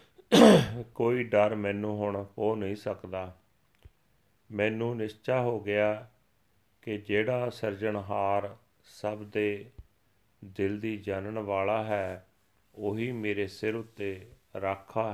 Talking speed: 105 wpm